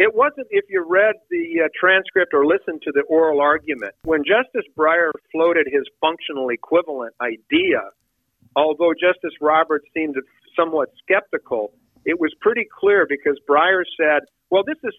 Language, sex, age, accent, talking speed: English, male, 50-69, American, 150 wpm